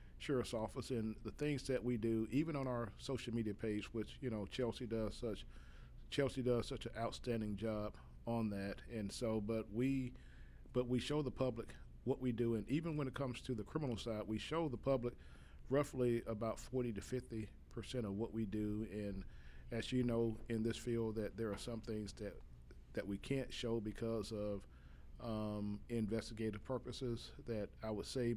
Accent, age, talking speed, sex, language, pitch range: American, 40-59, 185 wpm, male, English, 105-125 Hz